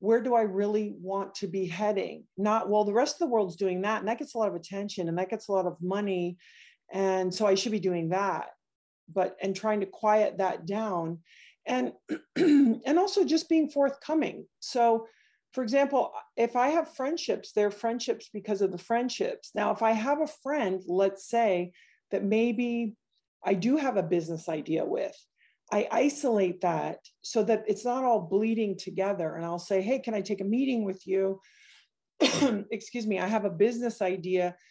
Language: English